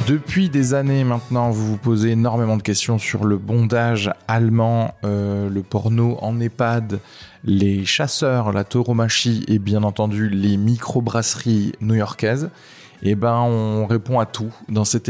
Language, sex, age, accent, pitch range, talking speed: French, male, 20-39, French, 100-120 Hz, 145 wpm